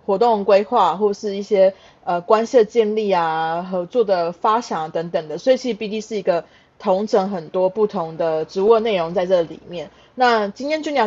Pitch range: 170-210 Hz